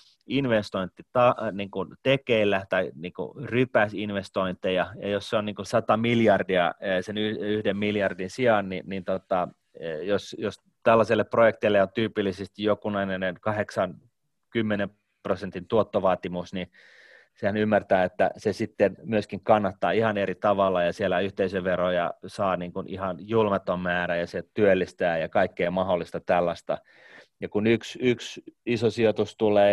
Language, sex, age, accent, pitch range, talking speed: Finnish, male, 30-49, native, 95-115 Hz, 130 wpm